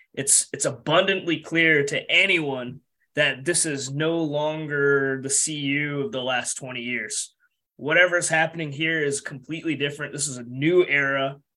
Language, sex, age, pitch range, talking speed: English, male, 20-39, 135-160 Hz, 155 wpm